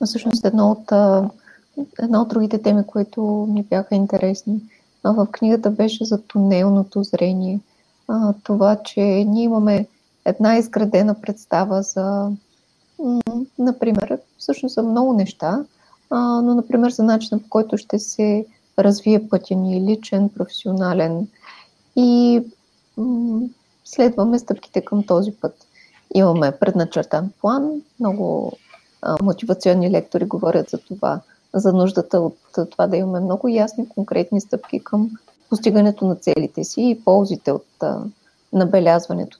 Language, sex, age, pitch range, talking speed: Bulgarian, female, 20-39, 195-230 Hz, 115 wpm